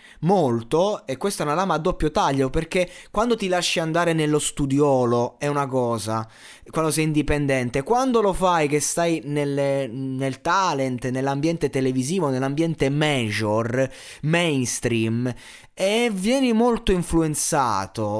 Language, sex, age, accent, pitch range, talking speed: Italian, male, 20-39, native, 130-180 Hz, 125 wpm